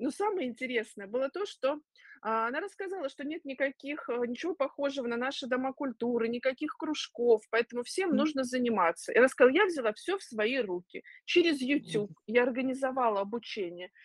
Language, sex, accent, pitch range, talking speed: Russian, female, native, 225-315 Hz, 160 wpm